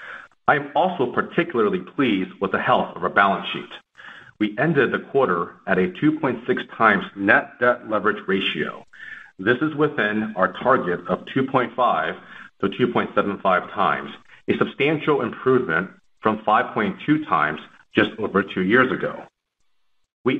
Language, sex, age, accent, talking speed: English, male, 40-59, American, 135 wpm